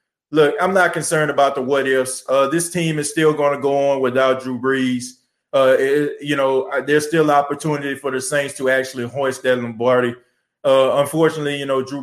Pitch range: 130-145 Hz